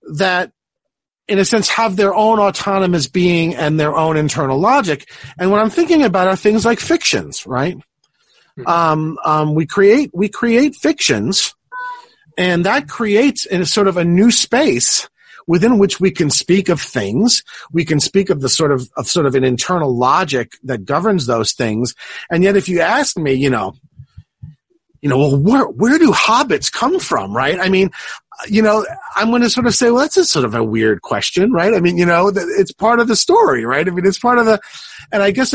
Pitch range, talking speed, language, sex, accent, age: 145-220 Hz, 200 wpm, English, male, American, 40-59